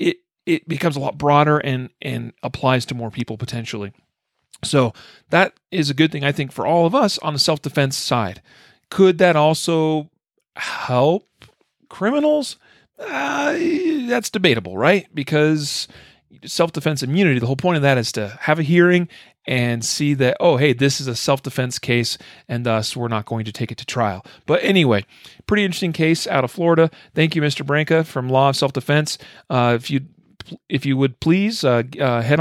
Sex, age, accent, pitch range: male, 40-59, American, 120-165 Hz